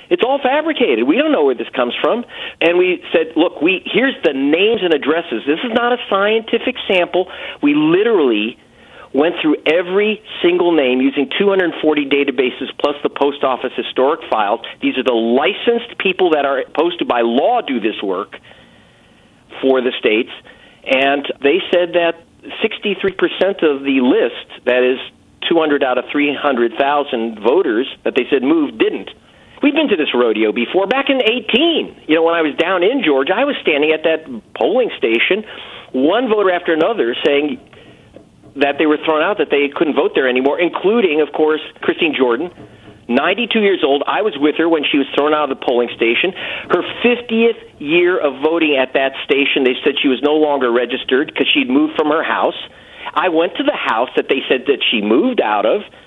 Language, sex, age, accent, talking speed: English, male, 50-69, American, 185 wpm